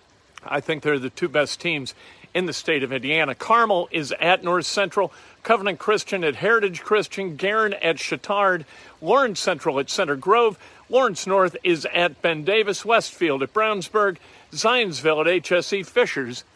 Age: 50-69